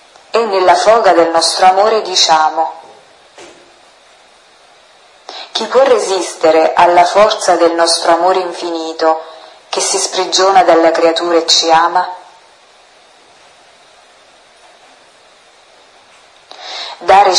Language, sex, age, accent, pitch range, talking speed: Italian, female, 30-49, native, 165-195 Hz, 85 wpm